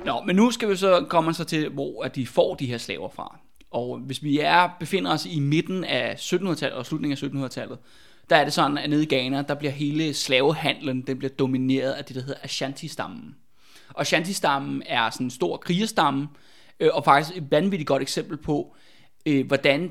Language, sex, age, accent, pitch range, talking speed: Danish, male, 20-39, native, 135-170 Hz, 195 wpm